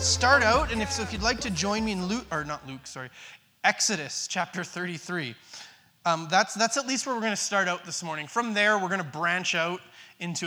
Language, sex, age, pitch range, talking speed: English, male, 20-39, 170-235 Hz, 235 wpm